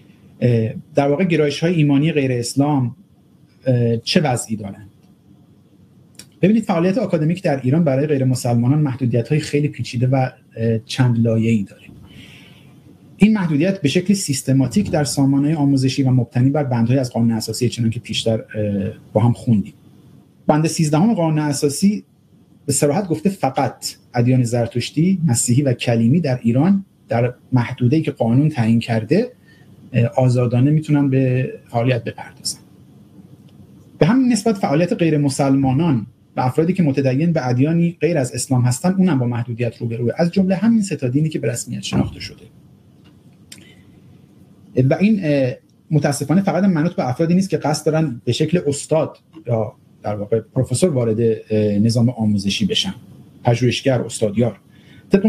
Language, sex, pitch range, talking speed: Persian, male, 120-155 Hz, 140 wpm